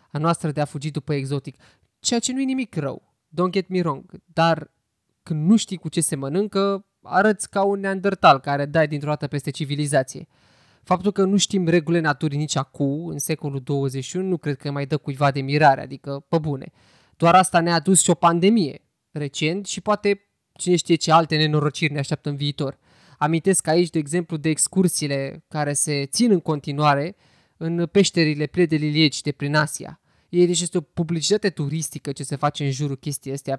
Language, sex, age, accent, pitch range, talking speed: Romanian, male, 20-39, native, 145-190 Hz, 190 wpm